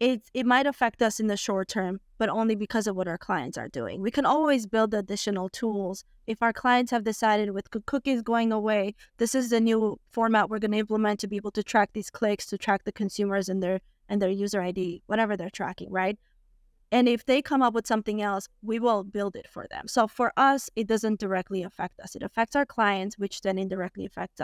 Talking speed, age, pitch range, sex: 225 wpm, 20-39, 200-230 Hz, female